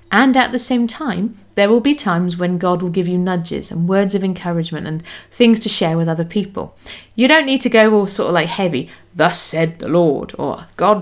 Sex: female